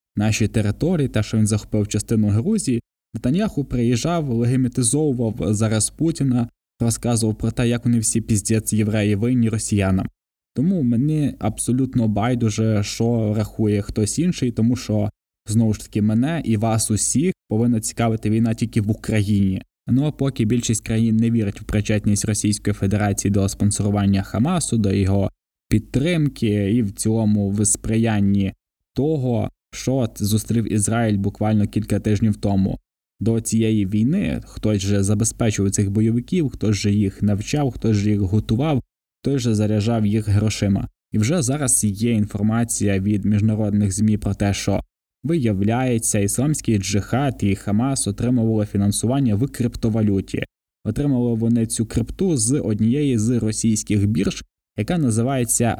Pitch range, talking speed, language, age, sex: 105-120 Hz, 135 wpm, Ukrainian, 20-39, male